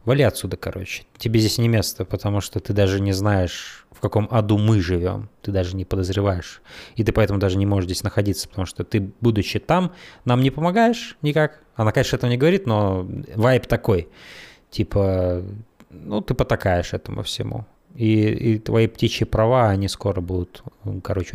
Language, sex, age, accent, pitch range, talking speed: Russian, male, 20-39, native, 95-115 Hz, 175 wpm